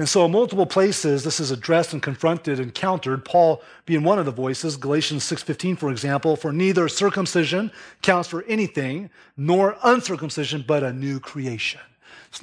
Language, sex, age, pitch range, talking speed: English, male, 30-49, 155-215 Hz, 170 wpm